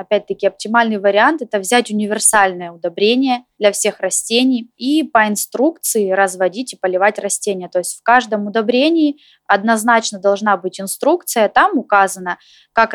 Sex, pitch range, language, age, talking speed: female, 195-250 Hz, Russian, 20-39, 140 wpm